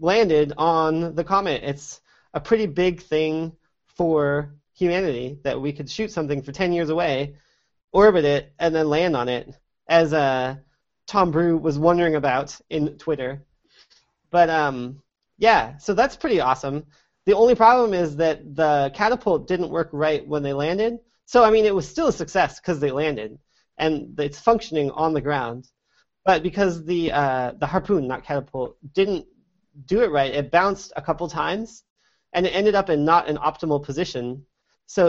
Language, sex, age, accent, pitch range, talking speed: English, male, 30-49, American, 145-180 Hz, 170 wpm